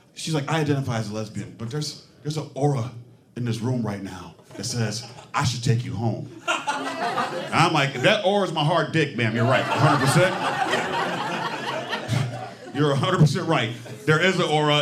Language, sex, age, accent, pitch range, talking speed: English, male, 40-59, American, 120-160 Hz, 180 wpm